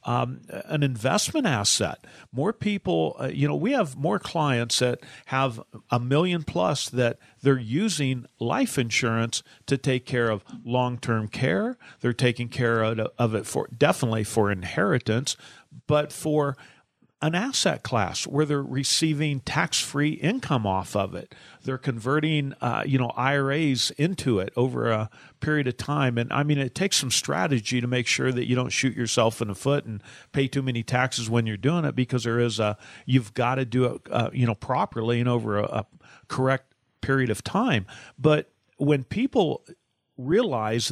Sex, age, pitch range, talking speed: male, 50-69, 115-145 Hz, 170 wpm